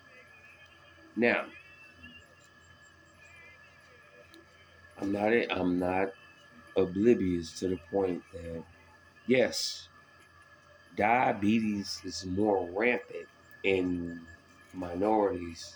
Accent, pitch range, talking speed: American, 90-115 Hz, 65 wpm